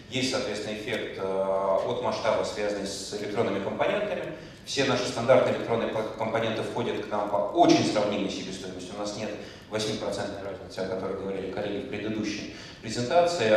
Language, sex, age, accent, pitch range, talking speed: Russian, male, 30-49, native, 100-130 Hz, 145 wpm